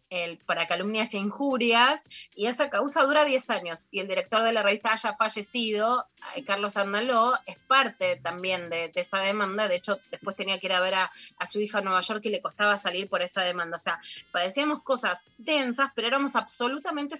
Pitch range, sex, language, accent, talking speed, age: 195-260 Hz, female, Spanish, Argentinian, 200 wpm, 20-39